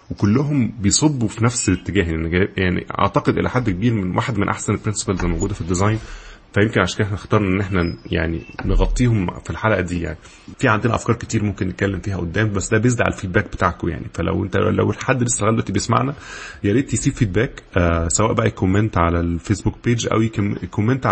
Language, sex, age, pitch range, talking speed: Arabic, male, 20-39, 90-110 Hz, 190 wpm